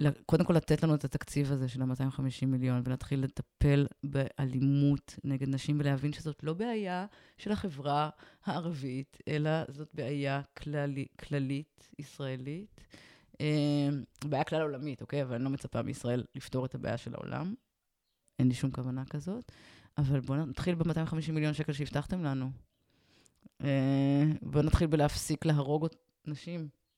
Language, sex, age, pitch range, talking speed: Hebrew, female, 20-39, 135-160 Hz, 135 wpm